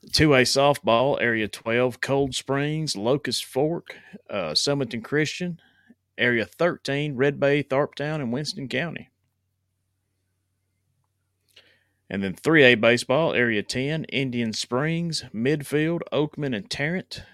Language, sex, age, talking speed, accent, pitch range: English, male, 30-49, 105 wpm, American, 110-150 Hz